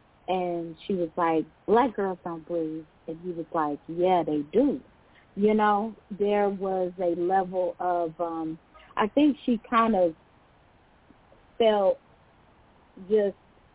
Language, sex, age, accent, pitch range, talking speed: English, female, 40-59, American, 175-230 Hz, 130 wpm